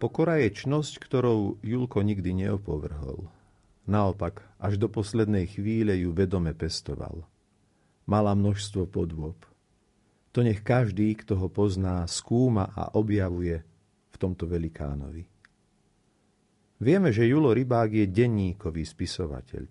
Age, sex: 50-69, male